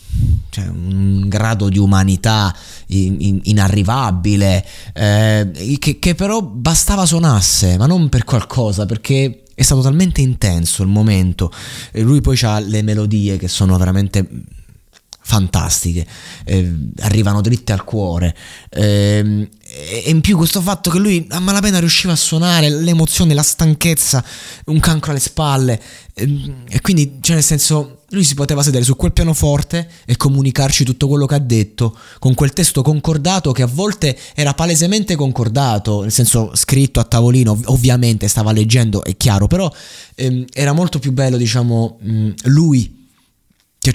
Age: 20-39